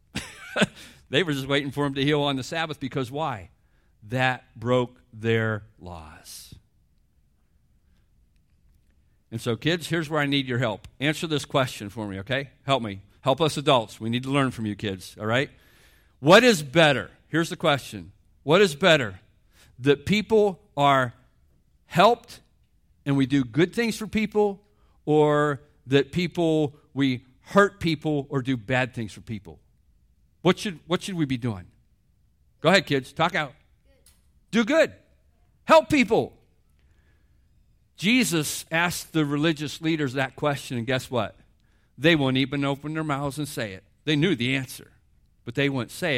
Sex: male